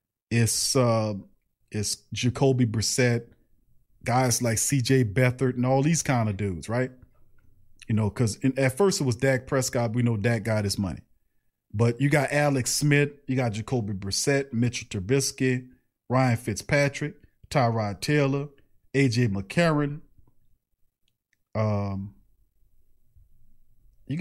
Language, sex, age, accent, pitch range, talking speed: English, male, 40-59, American, 115-145 Hz, 125 wpm